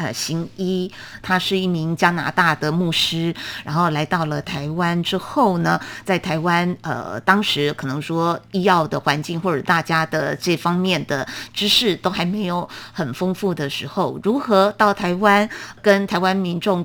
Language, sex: Chinese, female